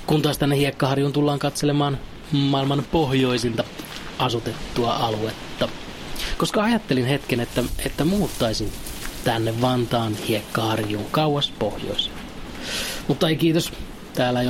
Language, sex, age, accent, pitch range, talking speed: Finnish, male, 30-49, native, 120-140 Hz, 110 wpm